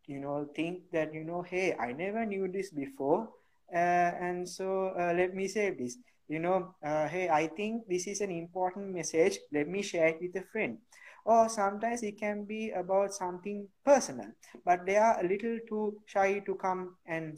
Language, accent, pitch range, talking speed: English, Indian, 160-200 Hz, 195 wpm